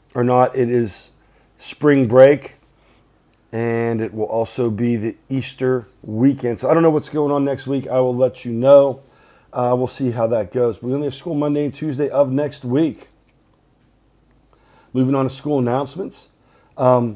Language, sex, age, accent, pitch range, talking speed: English, male, 40-59, American, 125-145 Hz, 175 wpm